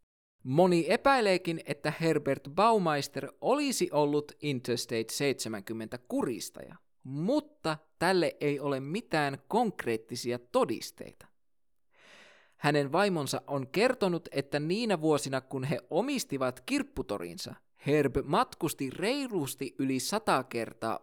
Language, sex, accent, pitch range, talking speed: Finnish, male, native, 125-180 Hz, 95 wpm